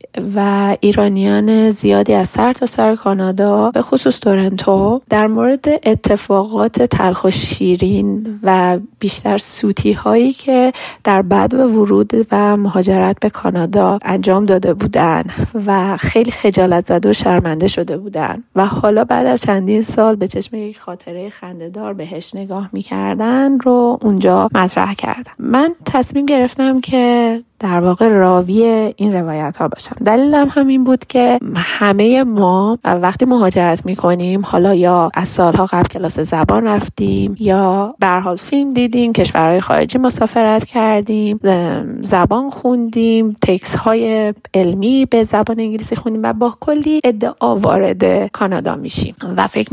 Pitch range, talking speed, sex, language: 185-235 Hz, 135 wpm, female, Persian